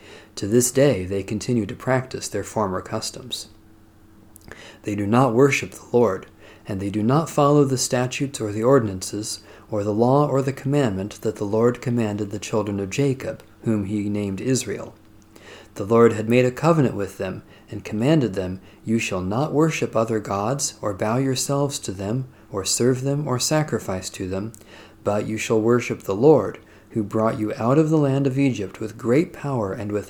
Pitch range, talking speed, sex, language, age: 105-130 Hz, 185 wpm, male, English, 40-59